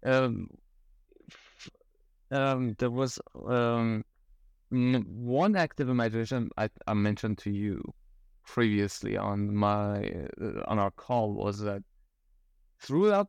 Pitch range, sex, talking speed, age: 100-125 Hz, male, 105 wpm, 30-49